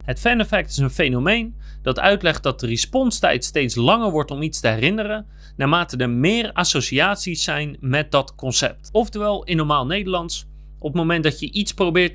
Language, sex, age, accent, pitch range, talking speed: Dutch, male, 30-49, Dutch, 130-175 Hz, 185 wpm